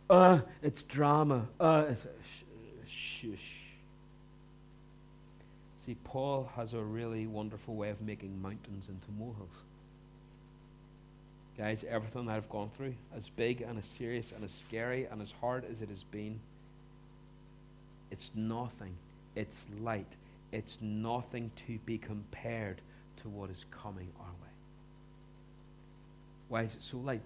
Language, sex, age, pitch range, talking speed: English, male, 60-79, 110-145 Hz, 135 wpm